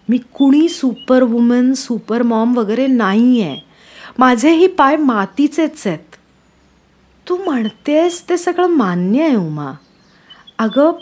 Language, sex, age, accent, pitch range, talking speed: Marathi, female, 30-49, native, 210-280 Hz, 115 wpm